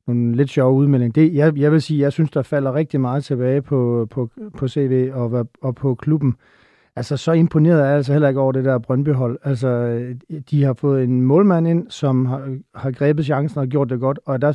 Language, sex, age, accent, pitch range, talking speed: Danish, male, 40-59, native, 130-150 Hz, 225 wpm